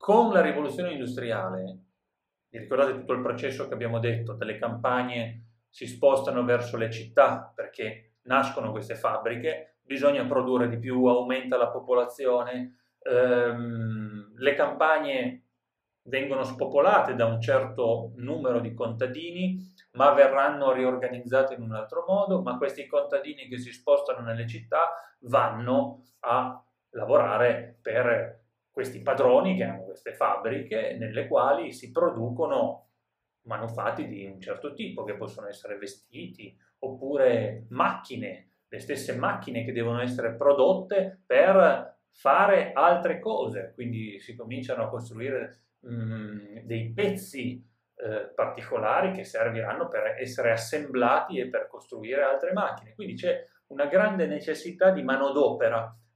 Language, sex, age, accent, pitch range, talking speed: Italian, male, 30-49, native, 115-155 Hz, 125 wpm